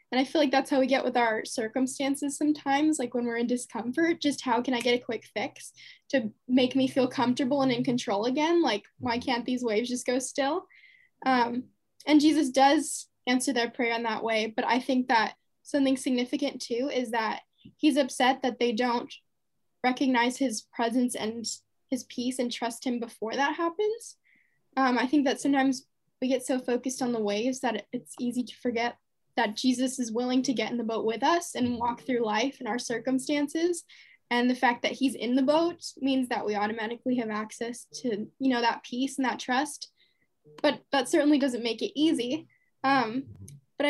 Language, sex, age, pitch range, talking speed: English, female, 10-29, 235-275 Hz, 195 wpm